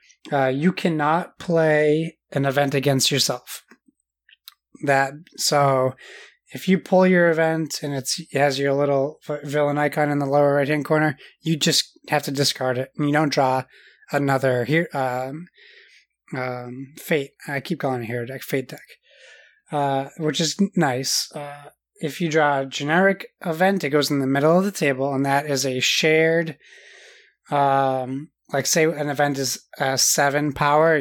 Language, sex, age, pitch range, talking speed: English, male, 20-39, 135-160 Hz, 165 wpm